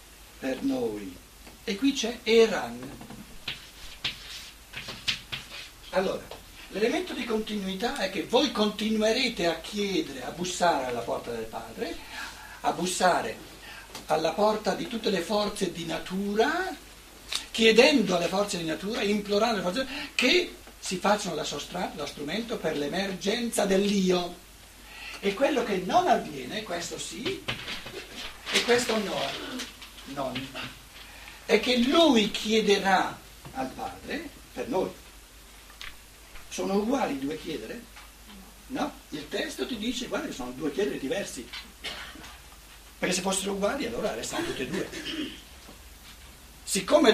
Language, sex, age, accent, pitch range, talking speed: Italian, male, 60-79, native, 170-235 Hz, 120 wpm